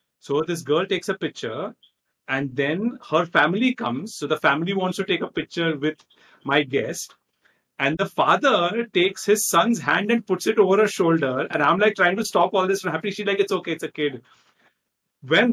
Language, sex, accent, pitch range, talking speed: English, male, Indian, 155-220 Hz, 205 wpm